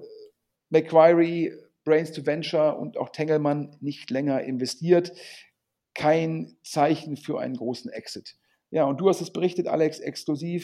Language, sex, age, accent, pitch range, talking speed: German, male, 50-69, German, 135-170 Hz, 135 wpm